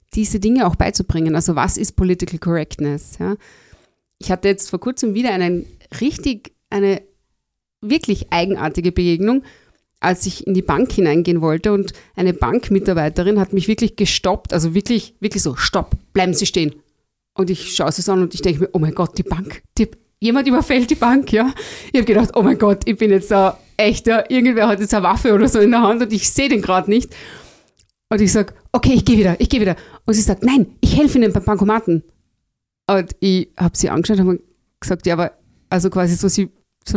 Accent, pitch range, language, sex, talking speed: German, 180-225 Hz, German, female, 195 wpm